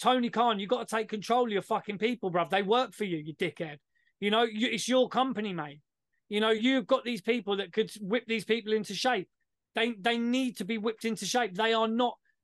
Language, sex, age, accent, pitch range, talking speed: English, male, 30-49, British, 195-240 Hz, 235 wpm